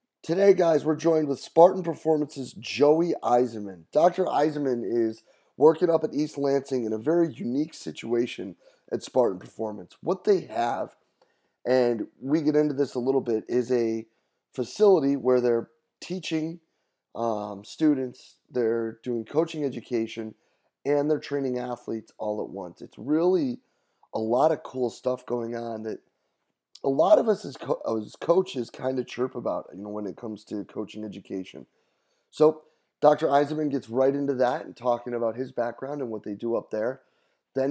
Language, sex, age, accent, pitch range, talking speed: English, male, 30-49, American, 115-155 Hz, 165 wpm